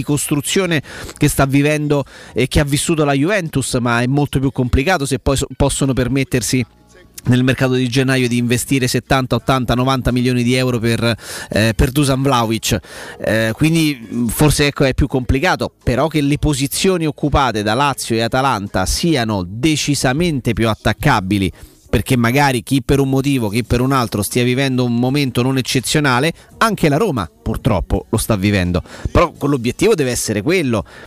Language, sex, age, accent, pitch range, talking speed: Italian, male, 30-49, native, 125-155 Hz, 160 wpm